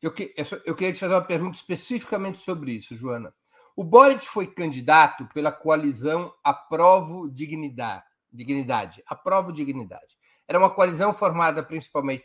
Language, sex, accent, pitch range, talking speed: Portuguese, male, Brazilian, 135-195 Hz, 120 wpm